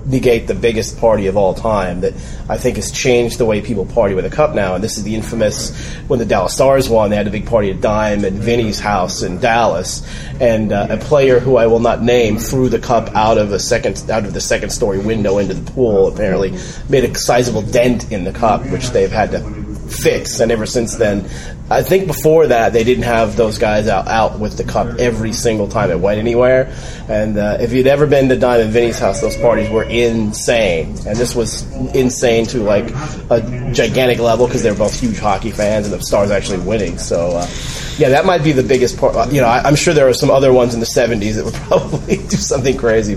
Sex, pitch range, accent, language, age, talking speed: male, 110-130 Hz, American, English, 30-49, 235 wpm